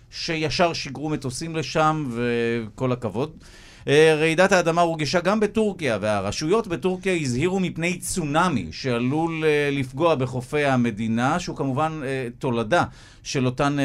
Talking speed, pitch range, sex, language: 110 wpm, 130-165 Hz, male, Hebrew